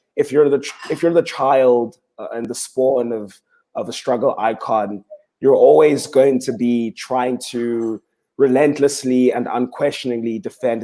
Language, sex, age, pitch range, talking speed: English, male, 20-39, 115-140 Hz, 155 wpm